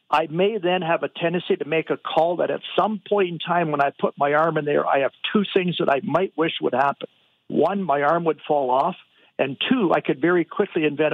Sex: male